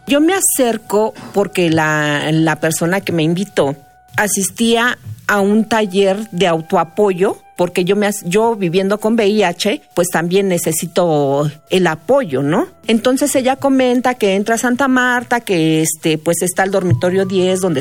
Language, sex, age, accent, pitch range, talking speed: Spanish, female, 40-59, Mexican, 170-215 Hz, 150 wpm